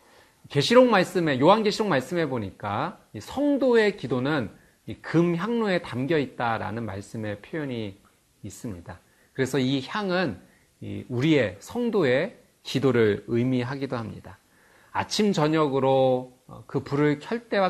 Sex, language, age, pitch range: male, Korean, 40-59, 115-165 Hz